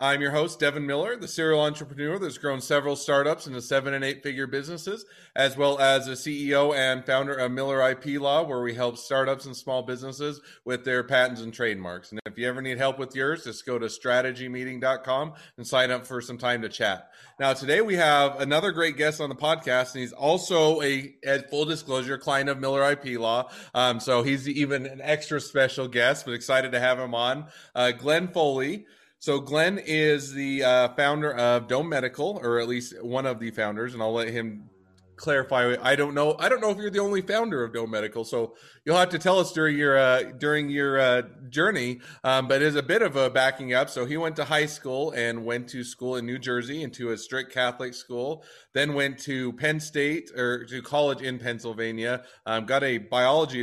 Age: 30-49